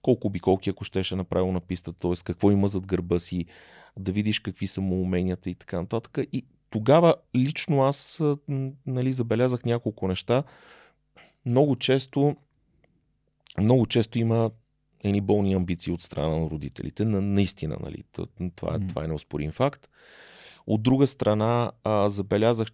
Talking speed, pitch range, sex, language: 145 wpm, 100-130 Hz, male, Bulgarian